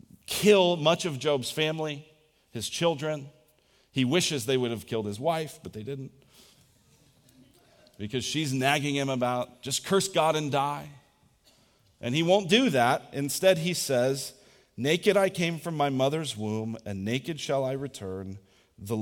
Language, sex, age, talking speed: English, male, 40-59, 155 wpm